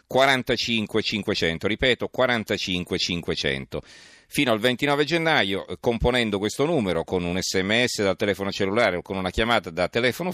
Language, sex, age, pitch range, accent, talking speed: Italian, male, 40-59, 90-115 Hz, native, 130 wpm